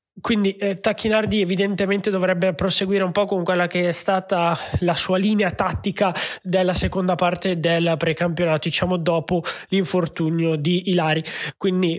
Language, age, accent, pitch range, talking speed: Italian, 20-39, native, 170-195 Hz, 140 wpm